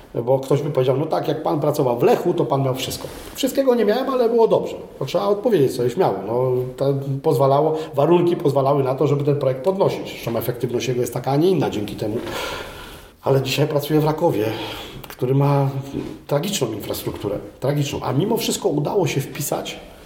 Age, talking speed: 40-59, 185 wpm